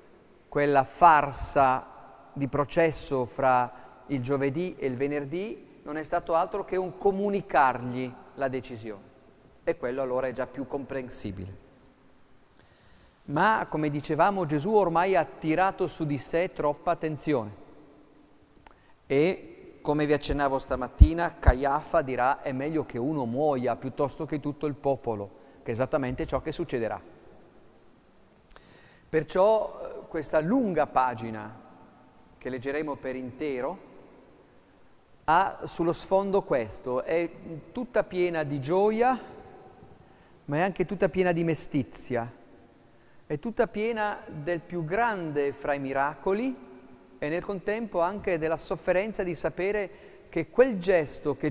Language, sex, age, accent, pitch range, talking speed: Italian, male, 40-59, native, 135-185 Hz, 125 wpm